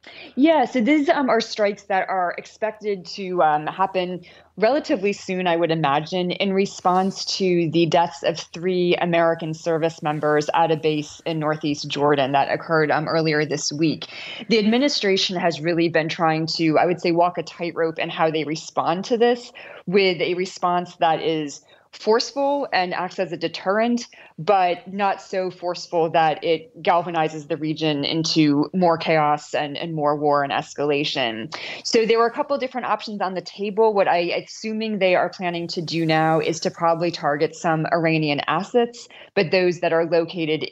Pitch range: 155-190 Hz